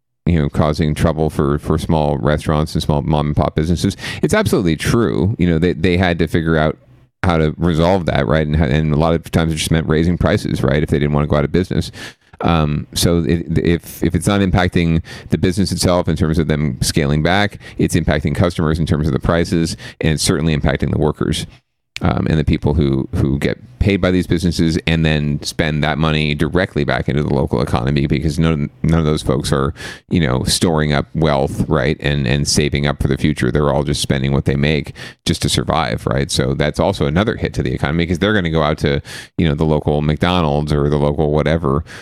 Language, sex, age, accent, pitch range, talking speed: English, male, 40-59, American, 75-85 Hz, 225 wpm